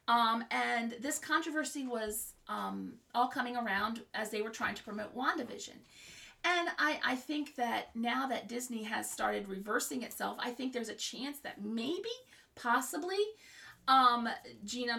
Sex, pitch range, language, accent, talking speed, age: female, 220-275 Hz, English, American, 150 wpm, 40-59